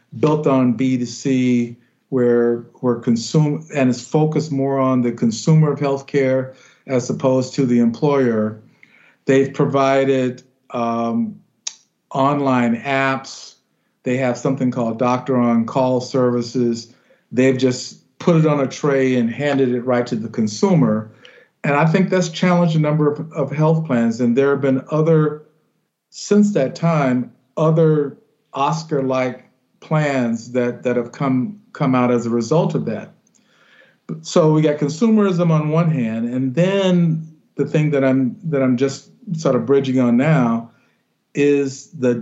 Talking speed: 150 wpm